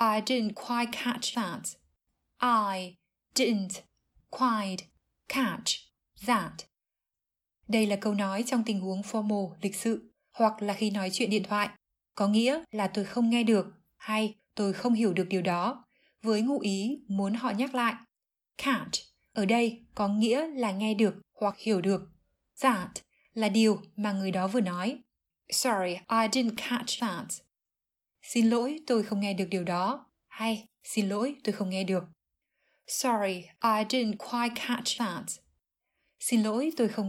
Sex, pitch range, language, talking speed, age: female, 200-240 Hz, Vietnamese, 155 wpm, 20-39